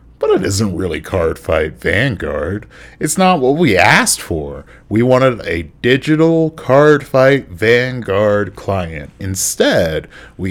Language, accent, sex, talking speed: English, American, male, 120 wpm